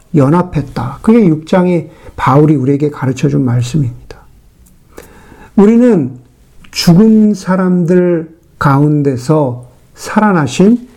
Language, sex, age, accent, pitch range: Korean, male, 50-69, native, 155-230 Hz